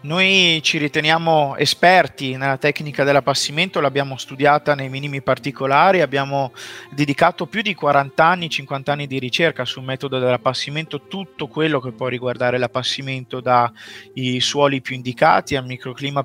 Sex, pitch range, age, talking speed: male, 130-155 Hz, 30-49, 135 wpm